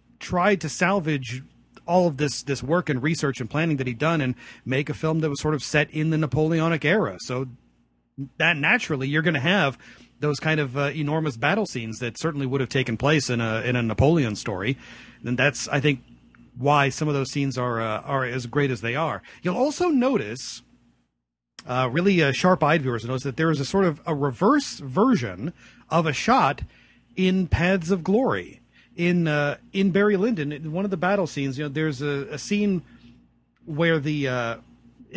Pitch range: 125-165 Hz